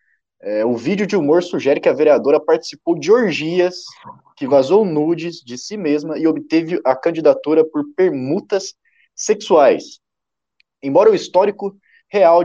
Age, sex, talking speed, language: 20-39, male, 140 wpm, Portuguese